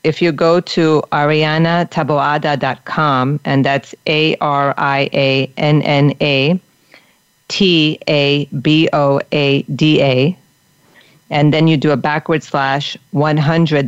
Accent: American